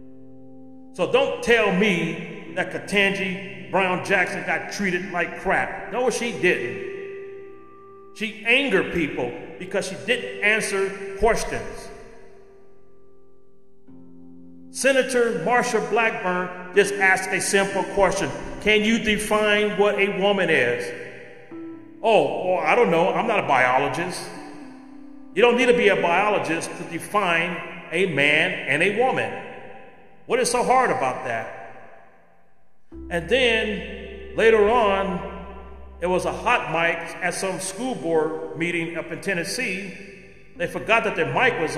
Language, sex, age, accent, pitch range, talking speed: English, male, 40-59, American, 155-225 Hz, 130 wpm